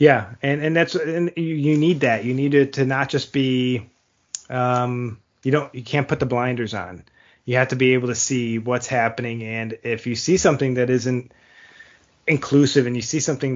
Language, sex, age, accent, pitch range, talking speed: English, male, 20-39, American, 115-135 Hz, 205 wpm